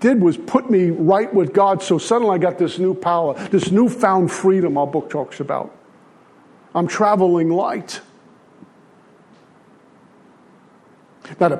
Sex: male